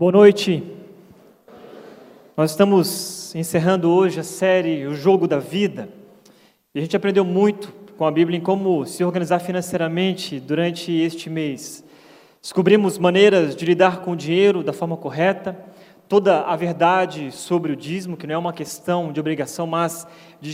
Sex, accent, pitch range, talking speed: male, Brazilian, 165-190 Hz, 155 wpm